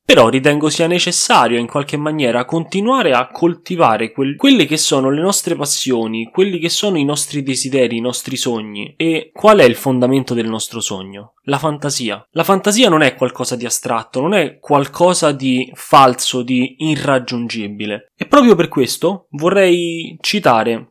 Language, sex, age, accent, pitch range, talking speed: Italian, male, 20-39, native, 120-170 Hz, 160 wpm